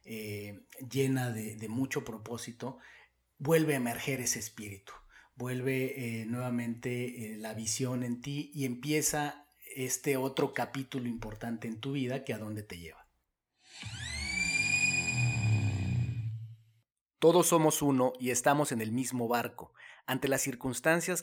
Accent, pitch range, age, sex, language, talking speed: Mexican, 115-135 Hz, 40-59, male, Spanish, 125 wpm